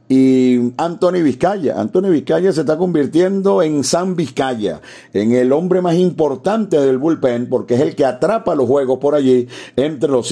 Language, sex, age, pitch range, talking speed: Spanish, male, 50-69, 125-155 Hz, 170 wpm